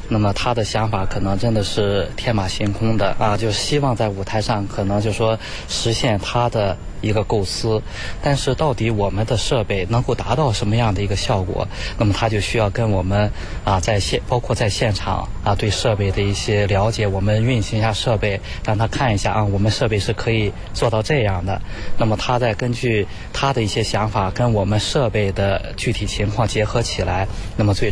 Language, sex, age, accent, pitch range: Chinese, male, 20-39, native, 100-115 Hz